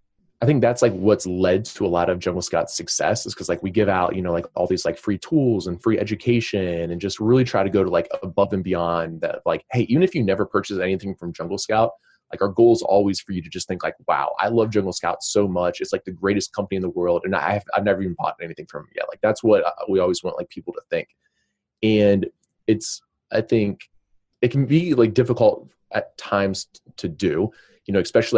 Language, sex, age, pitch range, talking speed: English, male, 20-39, 95-125 Hz, 245 wpm